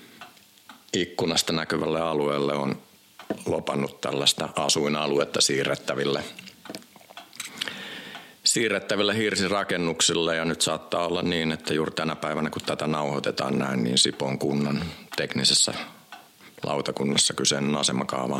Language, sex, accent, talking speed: Finnish, male, native, 100 wpm